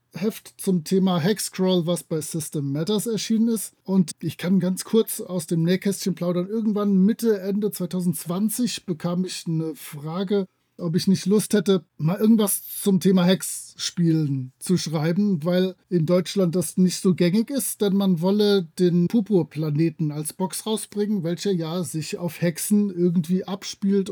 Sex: male